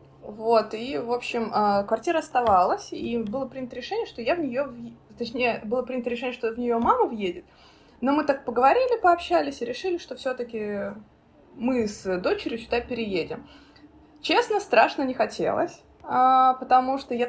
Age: 20-39